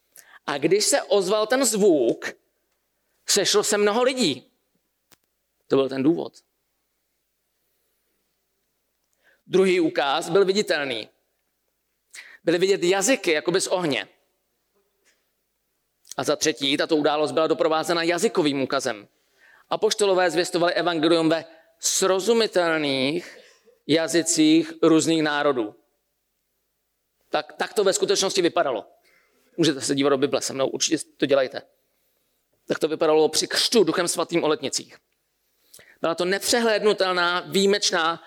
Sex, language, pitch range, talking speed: male, Czech, 165-225 Hz, 110 wpm